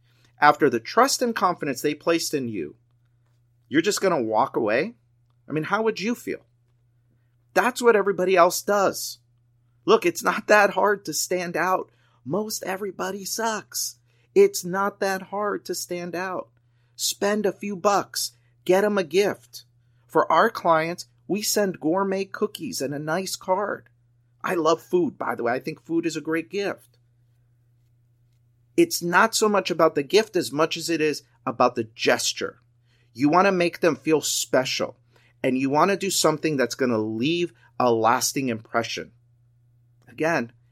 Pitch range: 120-175 Hz